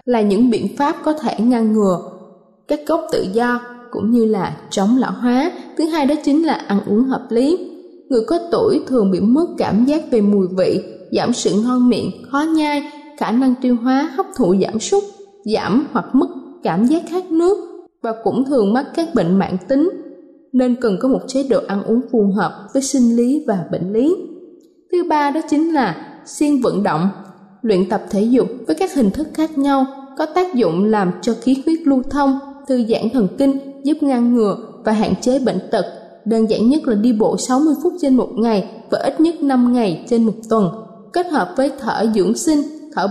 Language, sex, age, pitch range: Thai, female, 20-39, 220-290 Hz